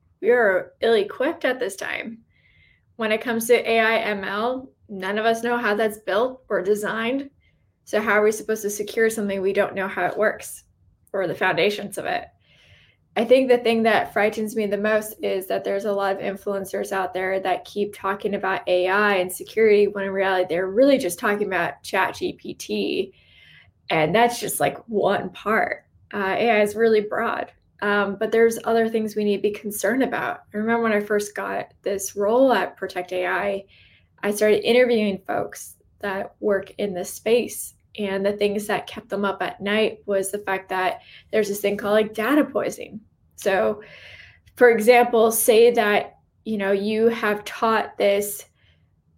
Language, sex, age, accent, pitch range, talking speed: English, female, 10-29, American, 195-225 Hz, 180 wpm